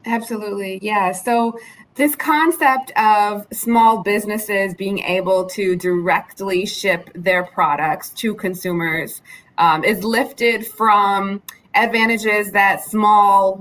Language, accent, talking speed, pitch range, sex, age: English, American, 105 wpm, 195-255 Hz, female, 20-39